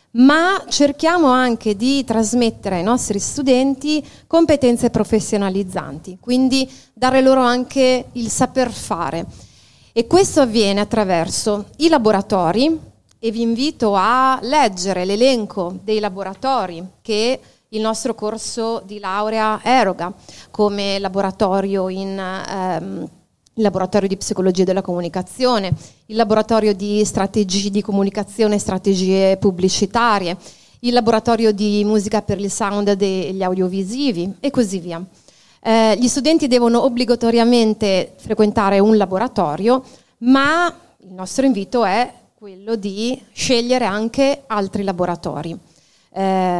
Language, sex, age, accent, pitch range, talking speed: Italian, female, 30-49, native, 195-245 Hz, 115 wpm